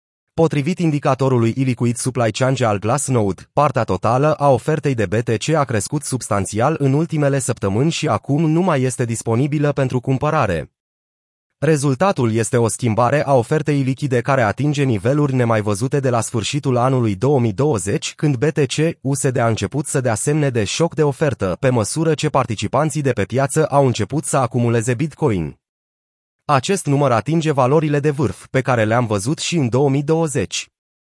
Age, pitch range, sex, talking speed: 30-49, 115-150 Hz, male, 155 wpm